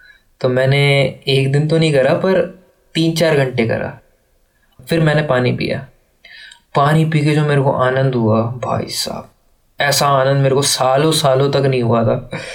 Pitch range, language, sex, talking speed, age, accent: 130-155 Hz, Hindi, male, 170 wpm, 20-39, native